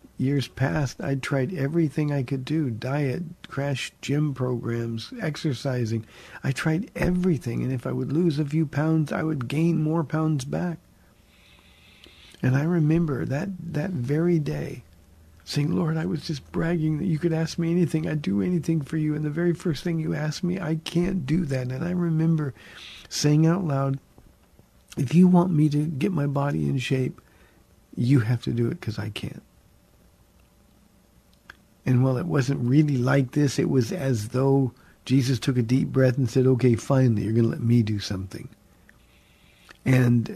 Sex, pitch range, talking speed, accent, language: male, 115-160 Hz, 175 wpm, American, English